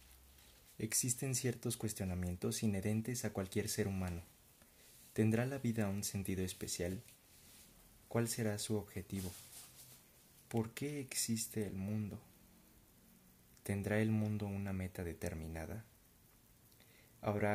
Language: Spanish